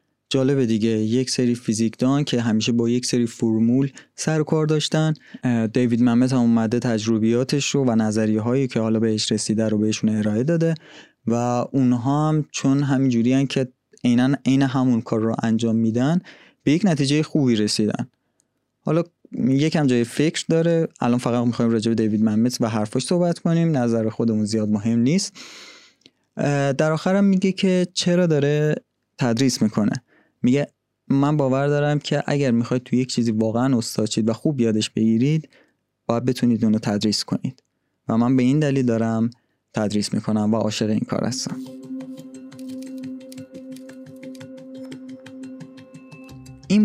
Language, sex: Persian, male